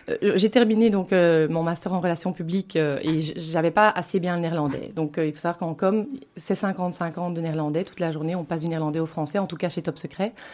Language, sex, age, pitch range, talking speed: French, female, 30-49, 155-190 Hz, 255 wpm